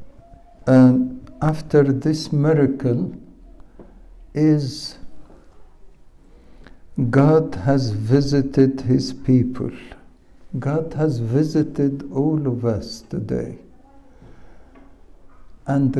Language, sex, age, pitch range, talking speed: English, male, 60-79, 120-150 Hz, 70 wpm